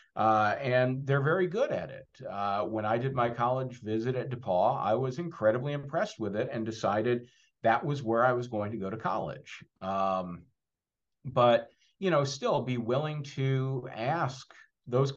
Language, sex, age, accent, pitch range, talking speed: English, male, 50-69, American, 110-140 Hz, 175 wpm